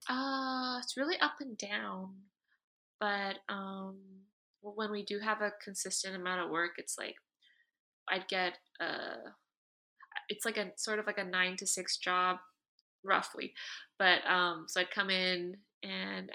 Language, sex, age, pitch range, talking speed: English, female, 20-39, 185-240 Hz, 155 wpm